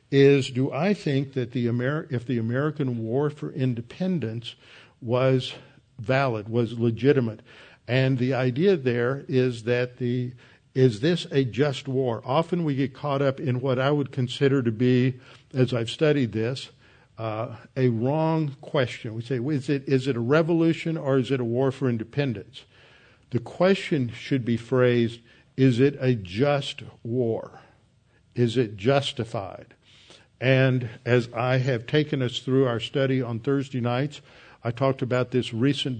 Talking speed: 155 wpm